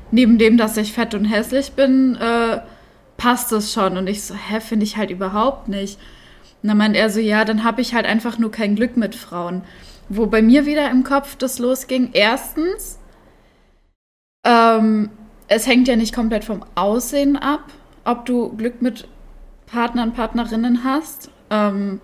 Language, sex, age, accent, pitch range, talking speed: German, female, 10-29, German, 200-240 Hz, 170 wpm